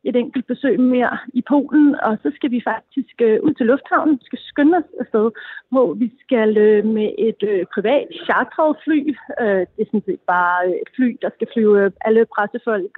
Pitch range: 210-260 Hz